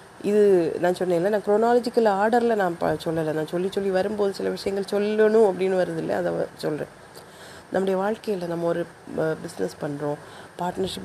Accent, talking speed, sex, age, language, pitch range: native, 165 wpm, female, 30-49, Tamil, 165-210 Hz